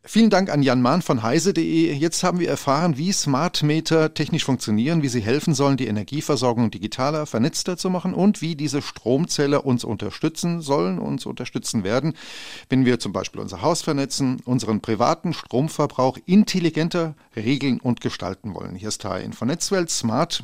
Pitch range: 120-155 Hz